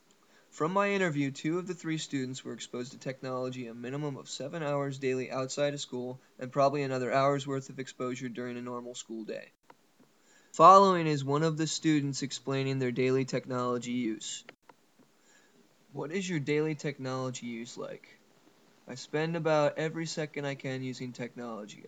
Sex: male